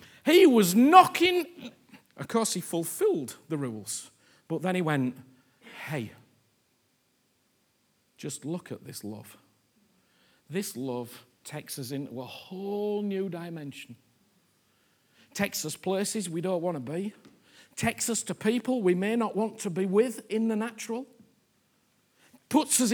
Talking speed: 135 wpm